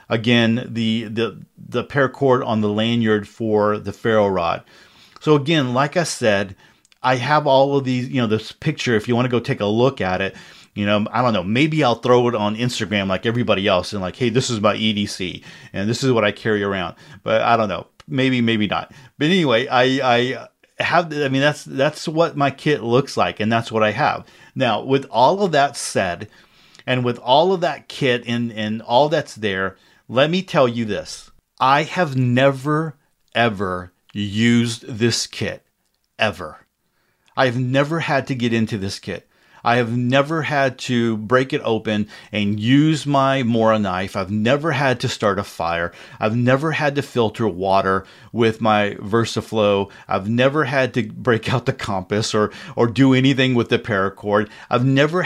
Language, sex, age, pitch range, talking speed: English, male, 40-59, 105-135 Hz, 190 wpm